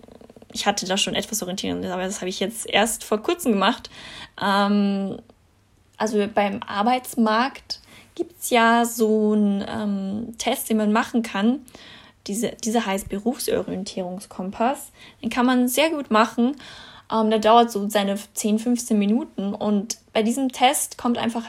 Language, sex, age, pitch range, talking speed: German, female, 10-29, 205-235 Hz, 150 wpm